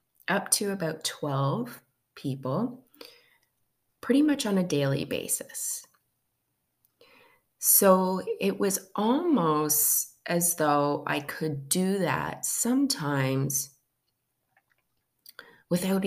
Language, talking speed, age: English, 85 wpm, 30-49